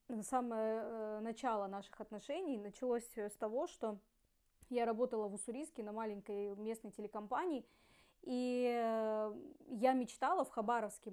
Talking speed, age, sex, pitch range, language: 115 wpm, 20-39, female, 220-270 Hz, Russian